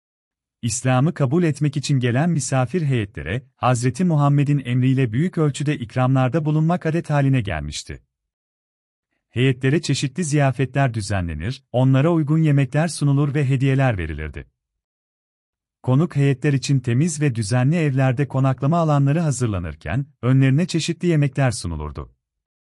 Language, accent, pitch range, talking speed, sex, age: Turkish, native, 95-150 Hz, 110 wpm, male, 40-59